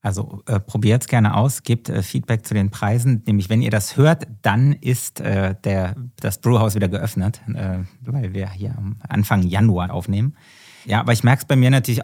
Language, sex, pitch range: German, male, 105-120 Hz